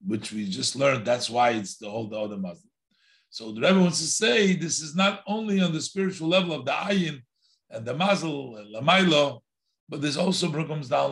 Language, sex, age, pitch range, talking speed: English, male, 50-69, 115-175 Hz, 205 wpm